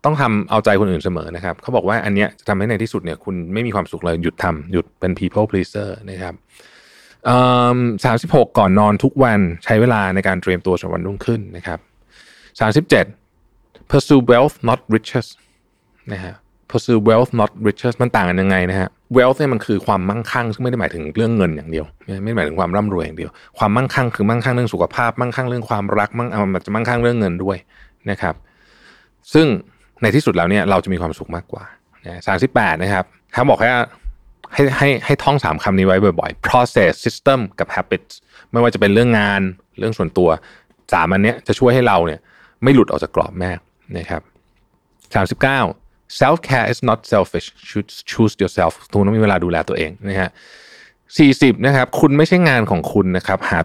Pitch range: 95-120 Hz